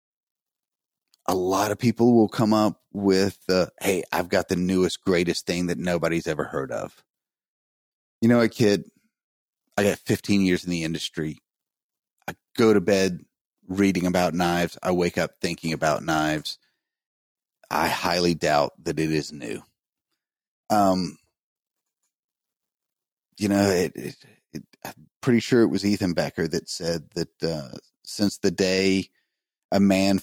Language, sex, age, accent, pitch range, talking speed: English, male, 30-49, American, 85-105 Hz, 145 wpm